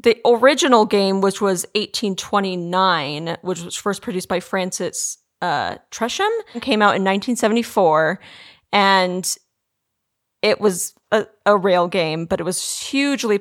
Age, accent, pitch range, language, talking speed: 30-49, American, 175-210 Hz, English, 130 wpm